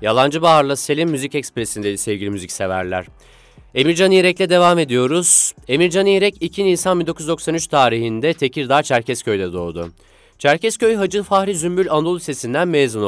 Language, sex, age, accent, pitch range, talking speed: Turkish, male, 30-49, native, 105-170 Hz, 125 wpm